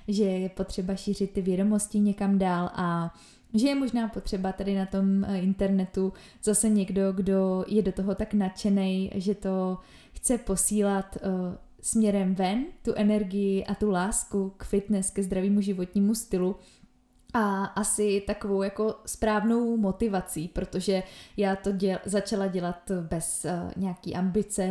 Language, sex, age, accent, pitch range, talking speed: Czech, female, 20-39, native, 185-205 Hz, 145 wpm